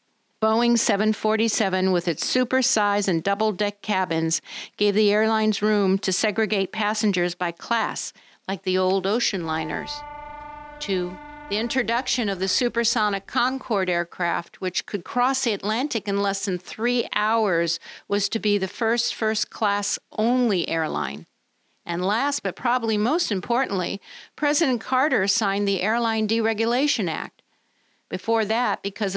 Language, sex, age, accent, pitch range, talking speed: English, female, 50-69, American, 190-235 Hz, 135 wpm